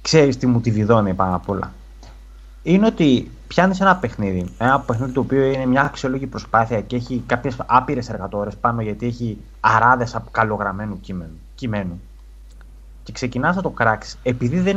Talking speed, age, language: 160 wpm, 30-49, Greek